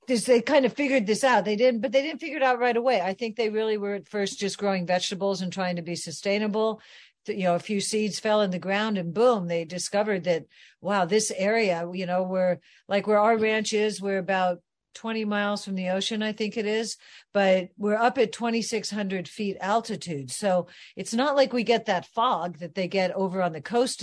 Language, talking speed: English, 225 wpm